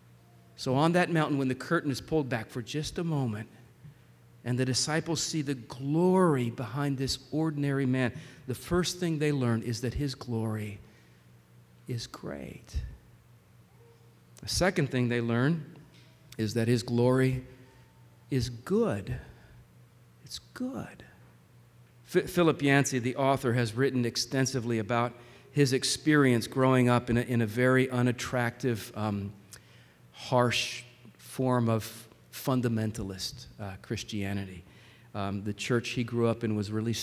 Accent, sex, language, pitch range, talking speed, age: American, male, English, 110-135 Hz, 130 wpm, 50-69